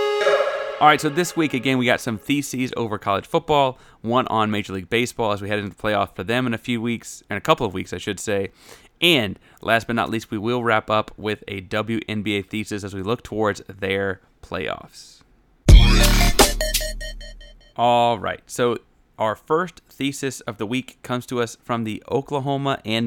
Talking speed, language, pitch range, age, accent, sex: 190 wpm, English, 105-130 Hz, 30-49, American, male